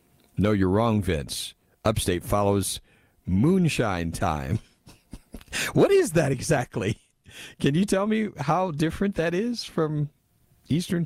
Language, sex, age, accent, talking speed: English, male, 50-69, American, 120 wpm